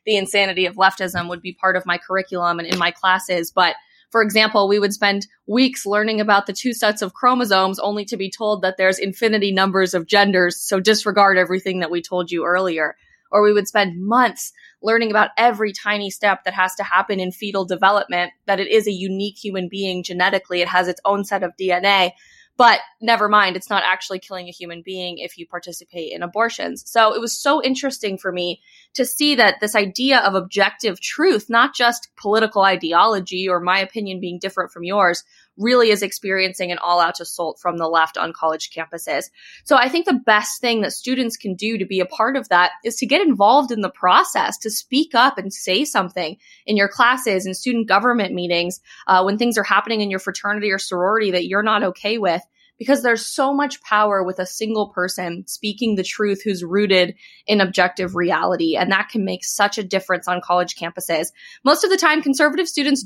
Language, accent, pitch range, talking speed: English, American, 185-225 Hz, 205 wpm